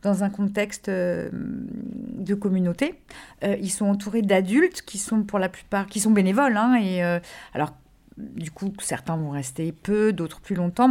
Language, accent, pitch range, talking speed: French, French, 185-230 Hz, 175 wpm